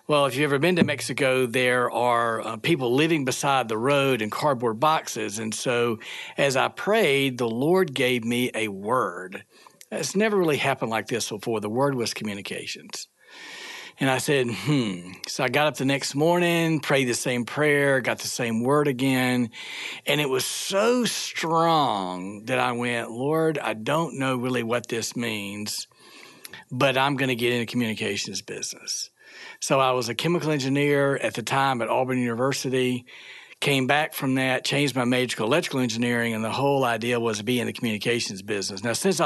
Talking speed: 185 wpm